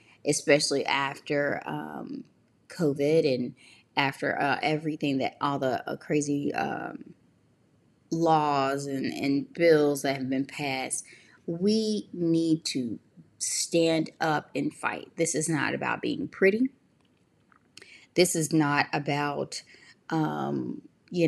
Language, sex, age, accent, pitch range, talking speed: English, female, 20-39, American, 145-170 Hz, 115 wpm